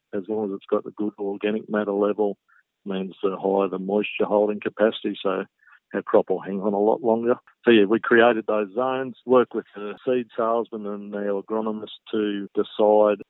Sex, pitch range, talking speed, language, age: male, 100-110 Hz, 195 wpm, English, 50-69